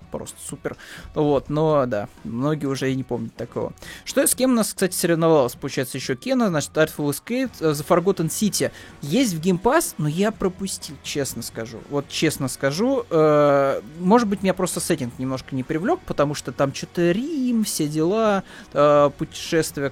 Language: Russian